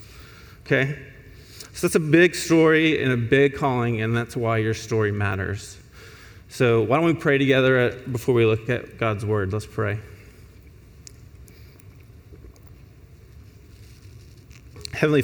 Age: 30-49